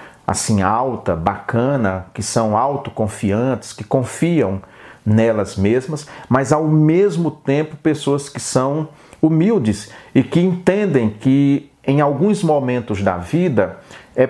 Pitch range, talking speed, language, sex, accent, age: 115-155 Hz, 120 wpm, Portuguese, male, Brazilian, 40-59